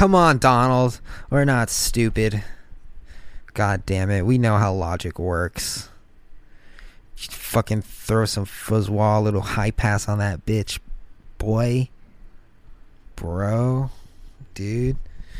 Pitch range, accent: 100-140 Hz, American